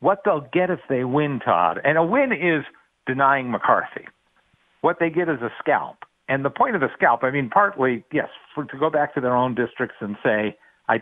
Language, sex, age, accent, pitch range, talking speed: English, male, 50-69, American, 115-150 Hz, 220 wpm